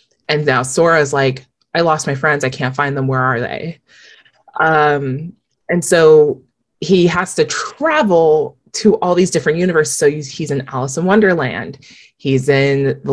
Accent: American